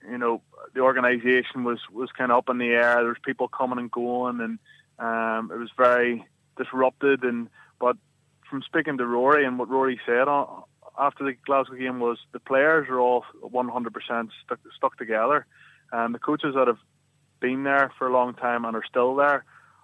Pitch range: 120-135 Hz